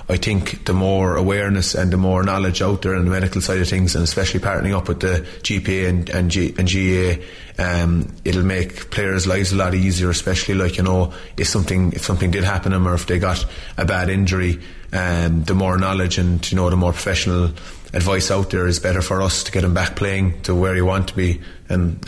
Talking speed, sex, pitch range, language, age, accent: 235 wpm, male, 90-95 Hz, English, 20-39, Irish